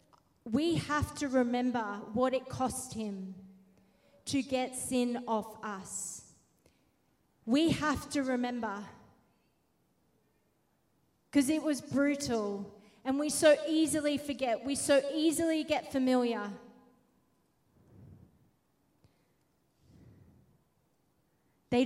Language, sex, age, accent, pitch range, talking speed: English, female, 30-49, Australian, 220-270 Hz, 90 wpm